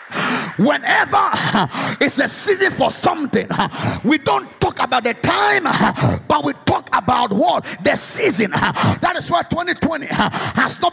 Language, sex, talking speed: English, male, 135 wpm